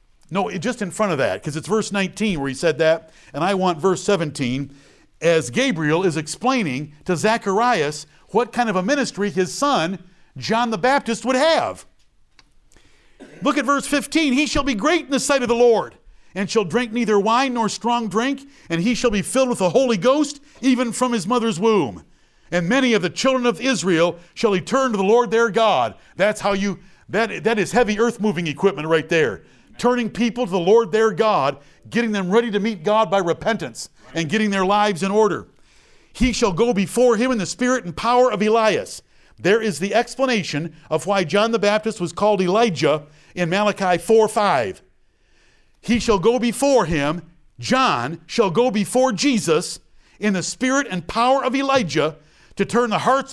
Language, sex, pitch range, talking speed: English, male, 185-245 Hz, 185 wpm